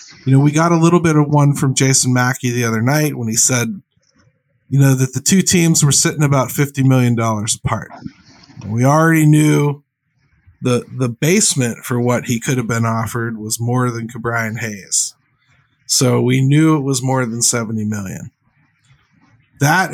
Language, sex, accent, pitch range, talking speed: English, male, American, 120-150 Hz, 180 wpm